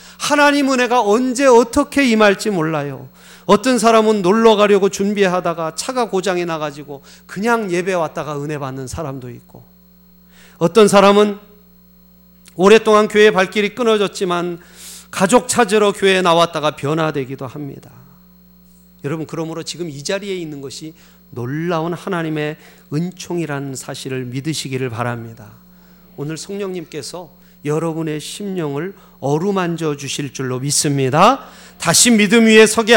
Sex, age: male, 30-49